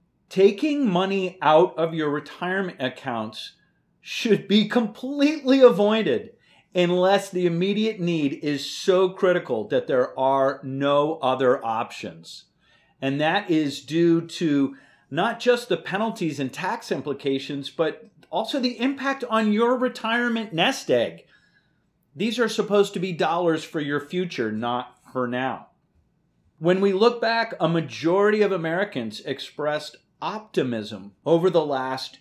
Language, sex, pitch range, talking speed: English, male, 140-200 Hz, 130 wpm